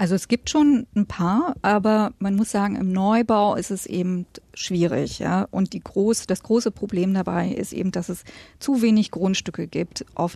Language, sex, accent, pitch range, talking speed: German, female, German, 190-225 Hz, 190 wpm